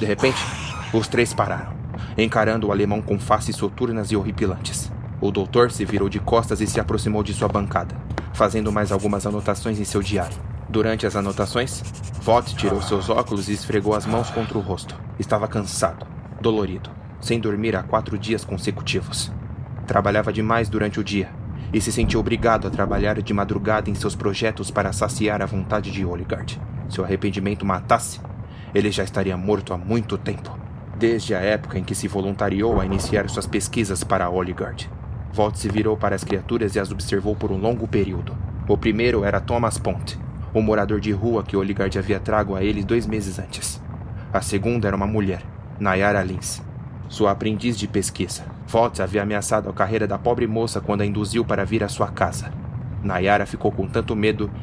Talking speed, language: 180 wpm, Portuguese